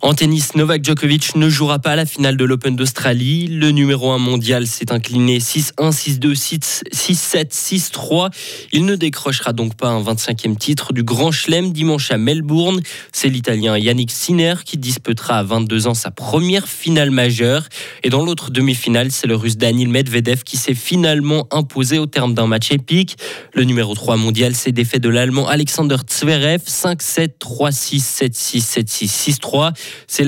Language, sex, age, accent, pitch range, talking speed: French, male, 20-39, French, 120-150 Hz, 155 wpm